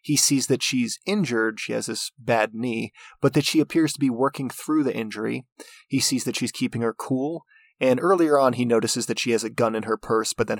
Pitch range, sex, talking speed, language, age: 115-150 Hz, male, 240 wpm, English, 20-39